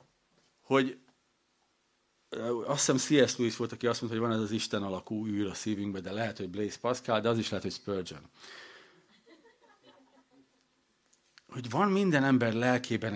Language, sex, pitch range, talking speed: Hungarian, male, 100-130 Hz, 155 wpm